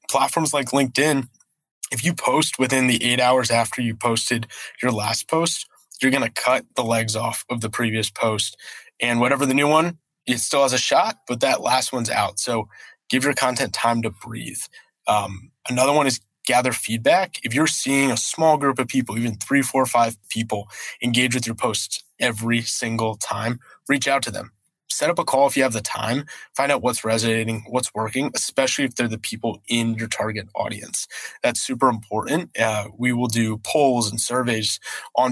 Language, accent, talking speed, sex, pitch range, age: English, American, 195 wpm, male, 115-135 Hz, 20-39